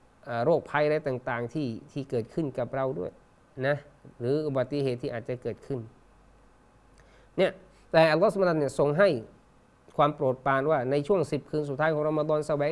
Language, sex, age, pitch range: Thai, male, 20-39, 125-150 Hz